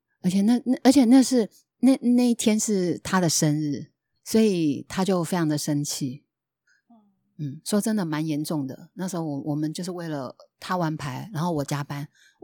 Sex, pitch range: female, 150-215 Hz